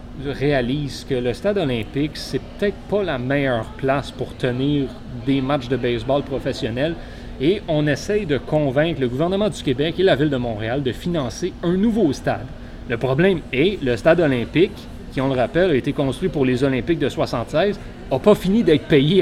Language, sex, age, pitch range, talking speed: French, male, 30-49, 125-160 Hz, 185 wpm